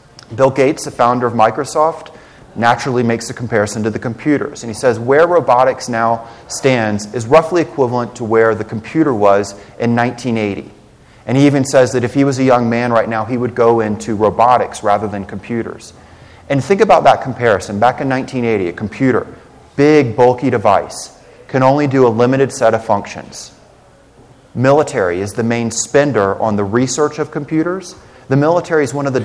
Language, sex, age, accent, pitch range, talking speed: English, male, 30-49, American, 110-135 Hz, 180 wpm